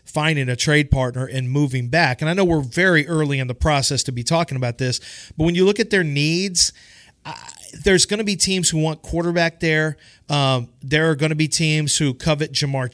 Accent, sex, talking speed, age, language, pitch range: American, male, 220 wpm, 40-59, English, 135-165 Hz